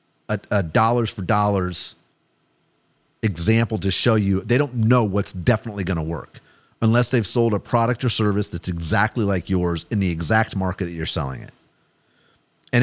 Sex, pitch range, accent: male, 95-130 Hz, American